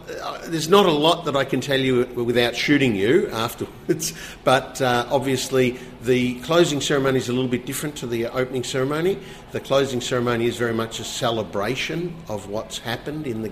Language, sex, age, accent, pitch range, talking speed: English, male, 50-69, Australian, 105-130 Hz, 180 wpm